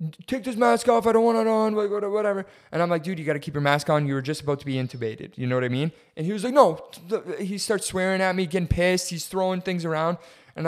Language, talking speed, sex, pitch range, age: English, 280 wpm, male, 135-185 Hz, 20-39